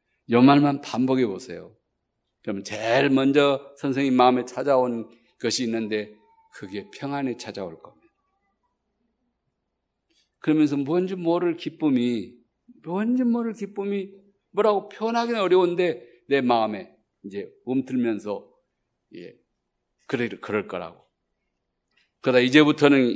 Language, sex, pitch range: Korean, male, 120-190 Hz